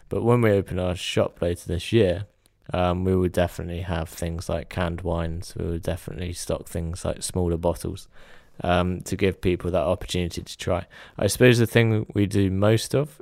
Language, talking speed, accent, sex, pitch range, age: English, 190 wpm, British, male, 90-100 Hz, 20-39